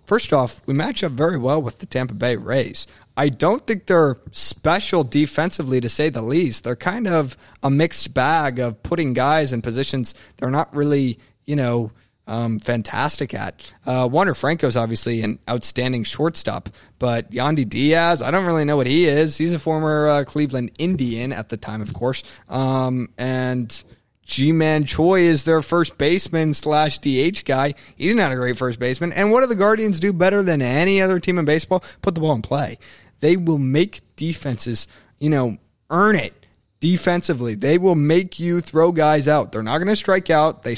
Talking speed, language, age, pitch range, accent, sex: 185 wpm, English, 20-39, 125-160 Hz, American, male